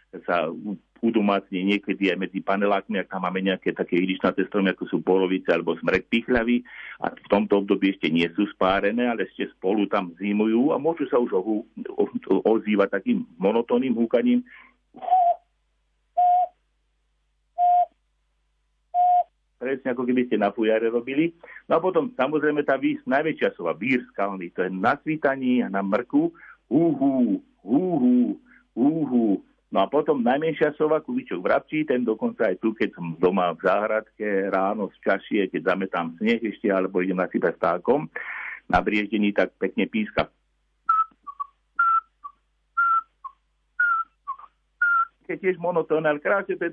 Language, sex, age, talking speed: Slovak, male, 50-69, 135 wpm